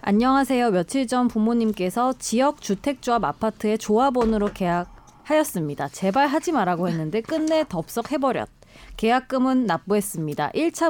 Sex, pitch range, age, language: female, 185-265 Hz, 20-39, Korean